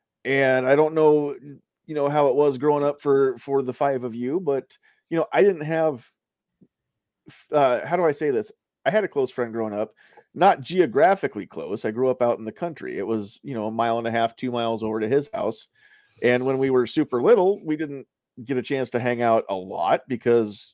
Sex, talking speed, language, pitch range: male, 225 wpm, English, 115-155 Hz